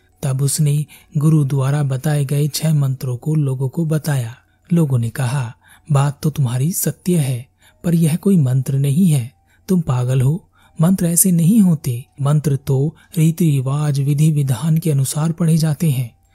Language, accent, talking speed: Hindi, native, 165 wpm